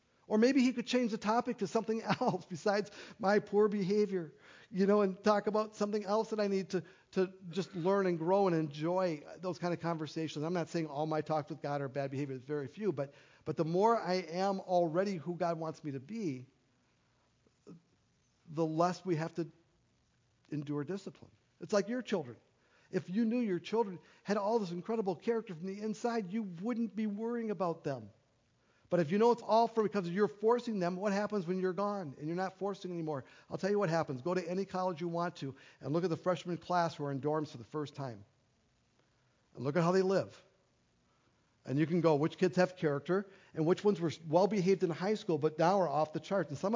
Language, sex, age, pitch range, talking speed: English, male, 50-69, 155-200 Hz, 220 wpm